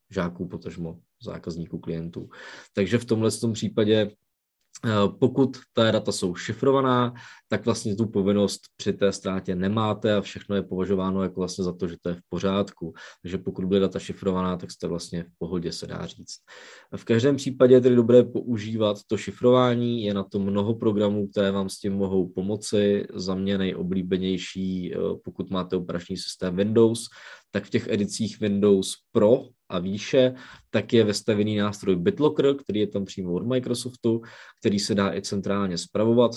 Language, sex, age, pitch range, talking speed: Czech, male, 20-39, 95-115 Hz, 170 wpm